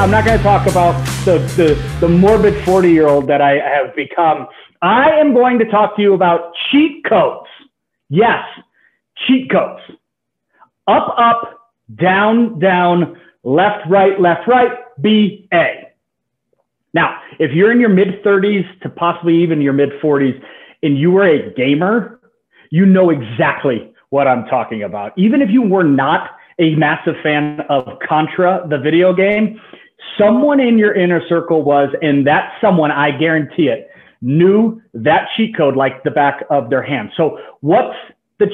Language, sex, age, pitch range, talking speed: English, male, 40-59, 150-195 Hz, 155 wpm